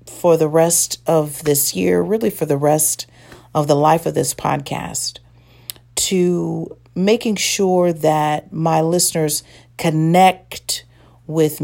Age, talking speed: 40-59, 125 wpm